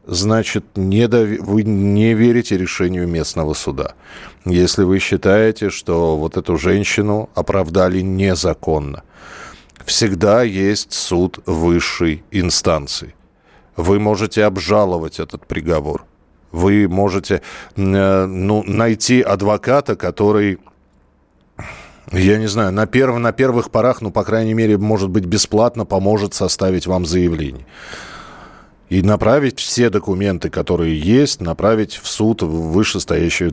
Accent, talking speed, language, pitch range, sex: native, 105 wpm, Russian, 85-105 Hz, male